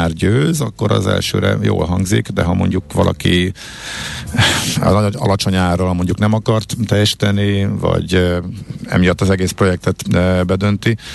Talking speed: 115 wpm